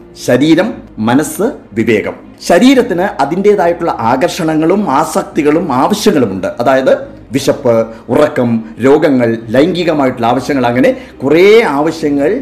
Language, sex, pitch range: Malayalam, male, 135-210 Hz